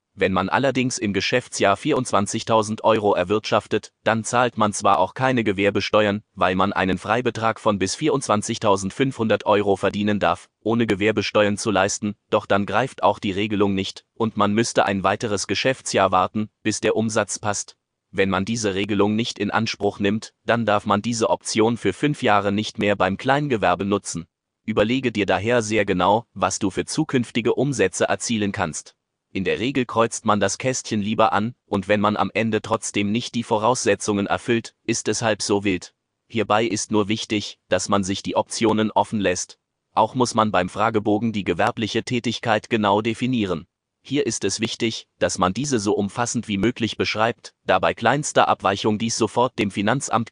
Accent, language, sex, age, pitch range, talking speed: German, German, male, 30-49, 100-115 Hz, 175 wpm